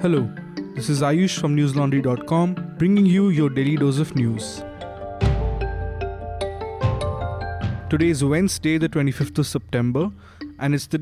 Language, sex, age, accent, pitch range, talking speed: English, male, 20-39, Indian, 135-165 Hz, 125 wpm